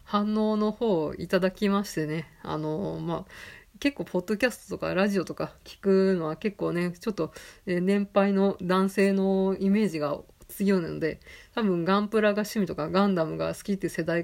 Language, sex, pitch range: Japanese, female, 170-205 Hz